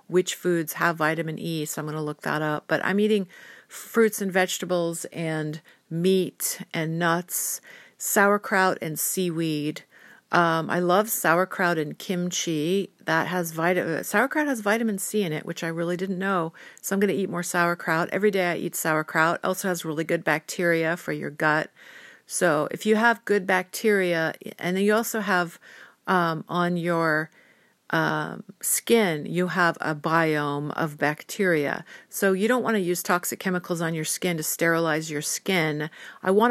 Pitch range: 165-195 Hz